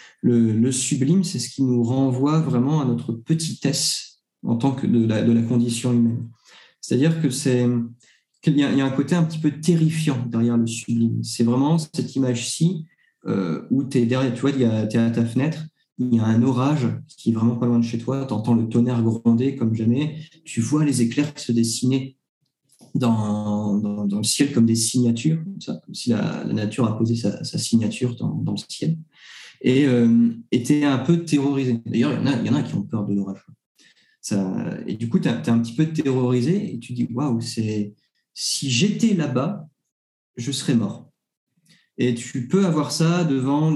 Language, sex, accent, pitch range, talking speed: French, male, French, 115-150 Hz, 210 wpm